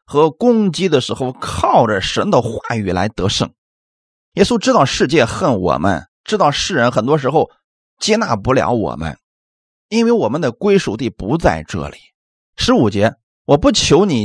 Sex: male